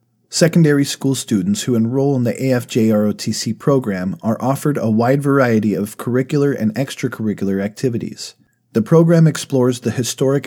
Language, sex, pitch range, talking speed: English, male, 110-135 Hz, 145 wpm